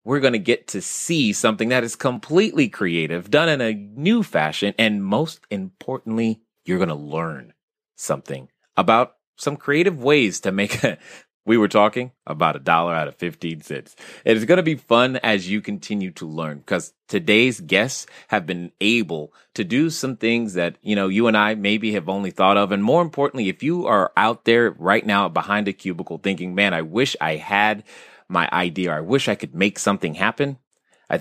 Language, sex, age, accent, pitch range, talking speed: English, male, 30-49, American, 95-130 Hz, 195 wpm